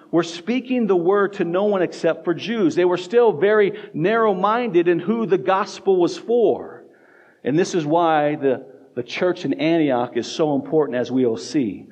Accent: American